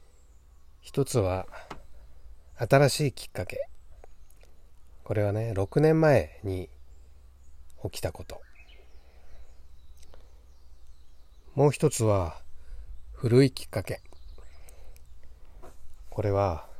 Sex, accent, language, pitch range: male, native, Japanese, 70-105 Hz